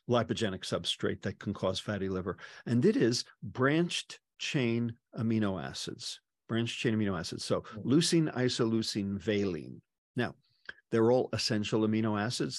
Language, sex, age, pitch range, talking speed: English, male, 50-69, 105-130 Hz, 135 wpm